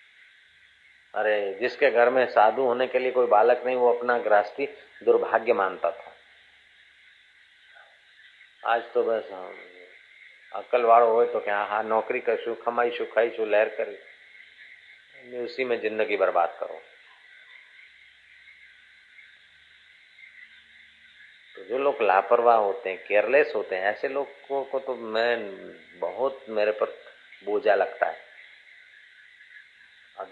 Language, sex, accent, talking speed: Hindi, male, native, 125 wpm